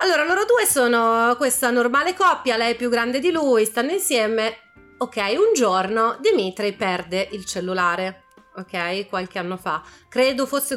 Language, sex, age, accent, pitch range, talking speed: Italian, female, 30-49, native, 195-260 Hz, 155 wpm